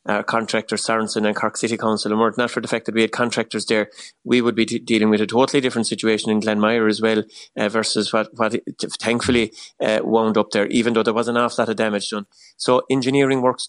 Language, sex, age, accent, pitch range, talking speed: English, male, 30-49, Irish, 110-120 Hz, 235 wpm